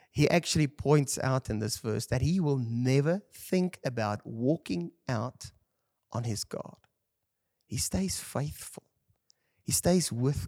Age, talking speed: 30-49, 135 wpm